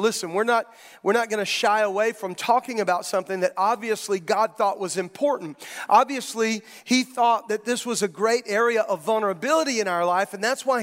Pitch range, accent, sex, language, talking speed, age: 210-255 Hz, American, male, English, 200 wpm, 40-59